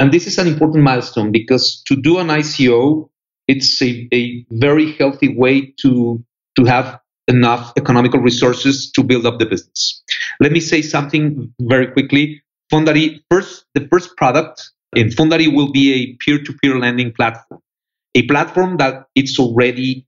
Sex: male